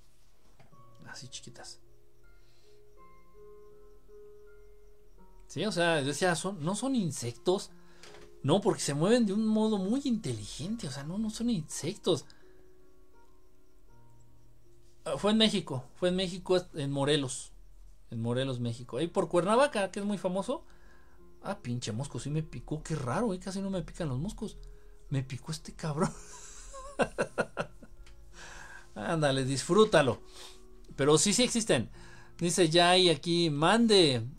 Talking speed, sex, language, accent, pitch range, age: 130 wpm, male, Spanish, Mexican, 125-190 Hz, 50-69